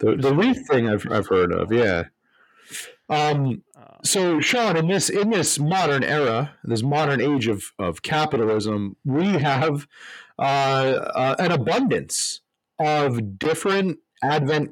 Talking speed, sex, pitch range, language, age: 135 wpm, male, 125-160 Hz, English, 30-49